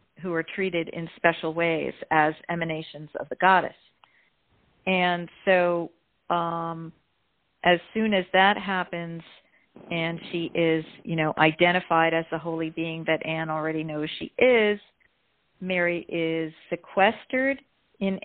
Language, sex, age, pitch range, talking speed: English, female, 50-69, 165-190 Hz, 130 wpm